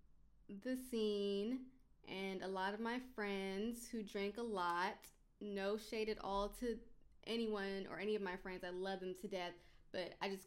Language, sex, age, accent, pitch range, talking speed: English, female, 20-39, American, 180-210 Hz, 180 wpm